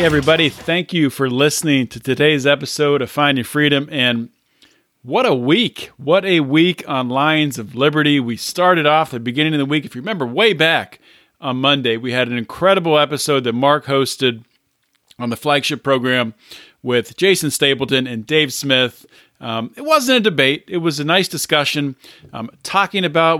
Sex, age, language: male, 40-59, English